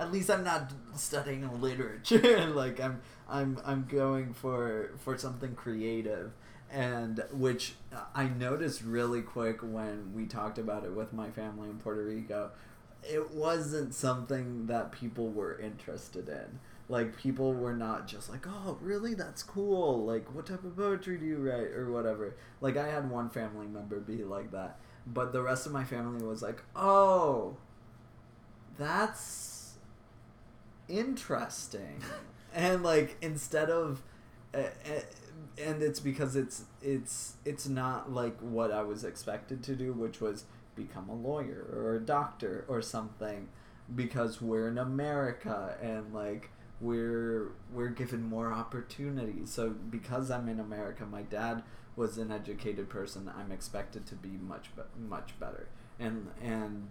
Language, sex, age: English, male, 20-39